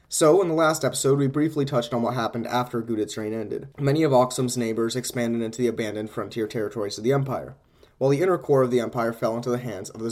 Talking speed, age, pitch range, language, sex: 245 wpm, 20-39, 115-140 Hz, English, male